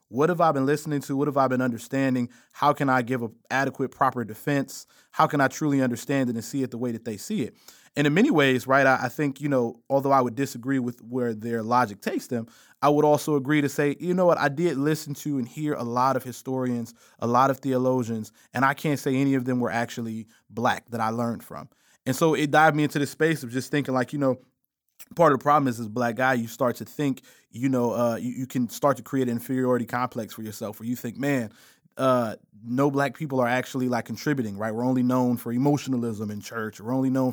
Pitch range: 120-145 Hz